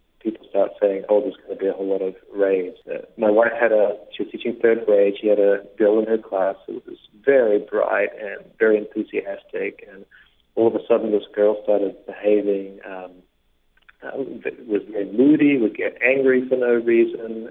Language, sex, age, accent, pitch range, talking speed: English, male, 40-59, American, 100-150 Hz, 195 wpm